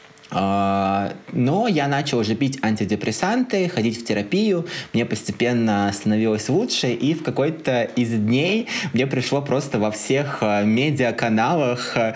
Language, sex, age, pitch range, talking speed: Russian, male, 20-39, 110-145 Hz, 120 wpm